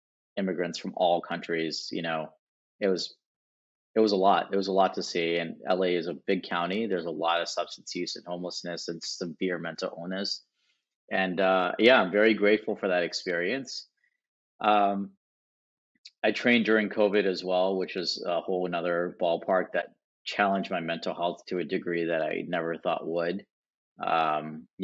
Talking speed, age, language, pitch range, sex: 175 wpm, 30-49, English, 85-100 Hz, male